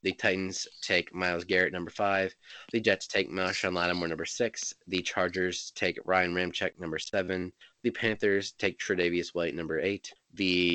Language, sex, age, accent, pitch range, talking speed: English, male, 20-39, American, 90-105 Hz, 160 wpm